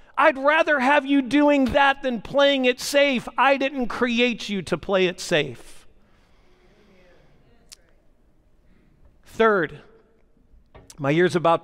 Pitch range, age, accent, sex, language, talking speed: 150-225 Hz, 40-59, American, male, English, 115 wpm